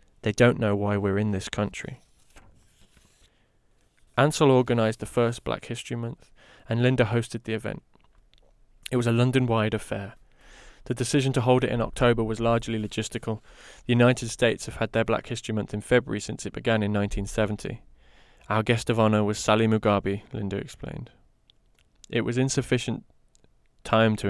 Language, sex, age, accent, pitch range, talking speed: English, male, 20-39, British, 105-120 Hz, 160 wpm